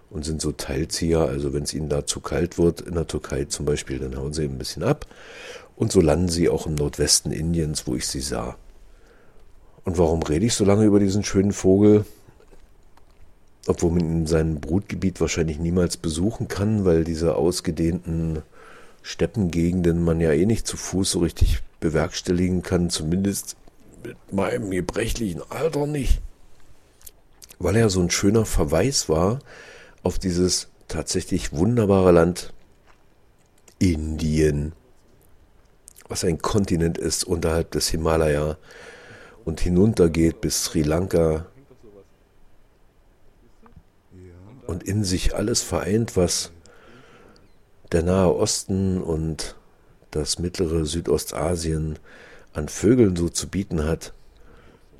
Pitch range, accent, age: 80-95 Hz, German, 50-69